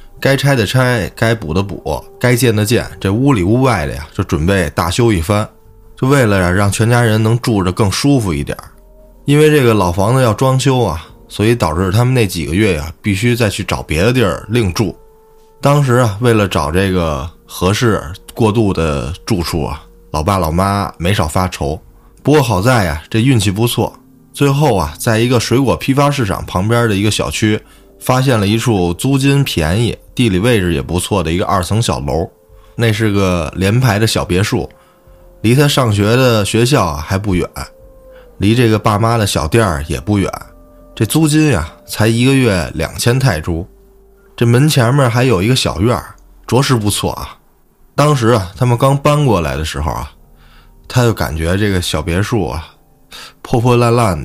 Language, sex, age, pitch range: Chinese, male, 20-39, 90-120 Hz